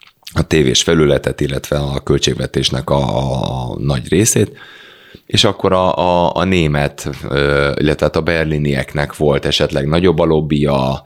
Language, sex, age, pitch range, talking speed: Hungarian, male, 30-49, 65-75 Hz, 125 wpm